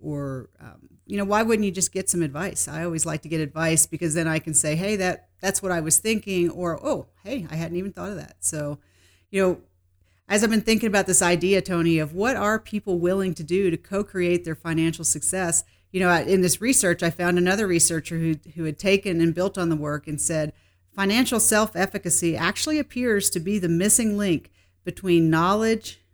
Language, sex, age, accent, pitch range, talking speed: English, female, 40-59, American, 160-200 Hz, 210 wpm